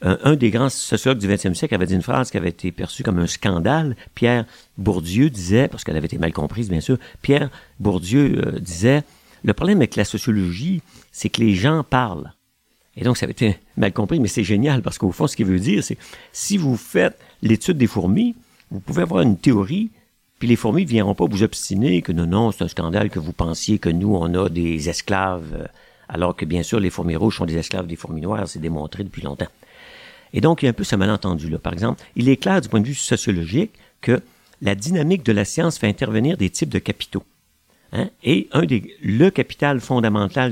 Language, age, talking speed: French, 50-69, 225 wpm